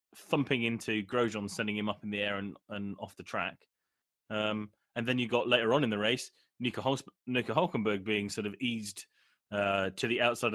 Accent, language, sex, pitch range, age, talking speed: British, English, male, 100-150 Hz, 20-39, 200 wpm